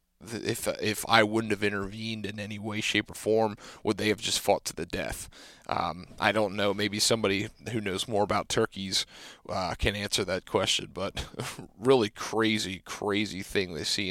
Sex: male